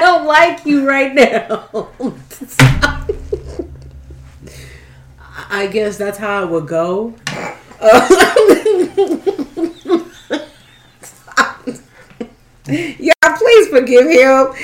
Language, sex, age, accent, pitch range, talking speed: English, female, 30-49, American, 195-320 Hz, 65 wpm